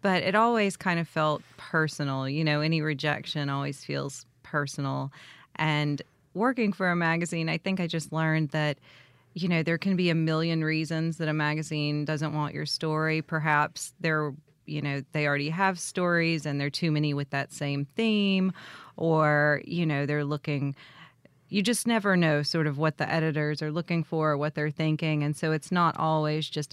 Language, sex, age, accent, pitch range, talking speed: English, female, 30-49, American, 145-170 Hz, 190 wpm